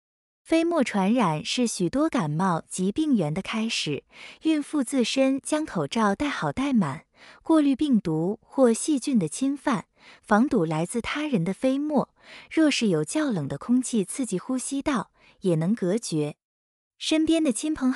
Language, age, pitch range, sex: Chinese, 20-39, 195-280 Hz, female